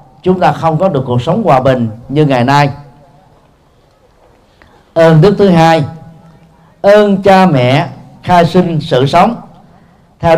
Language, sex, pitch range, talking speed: Vietnamese, male, 140-195 Hz, 140 wpm